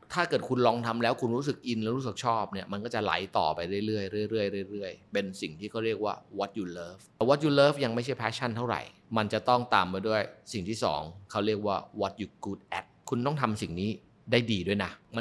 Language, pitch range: Thai, 100-125 Hz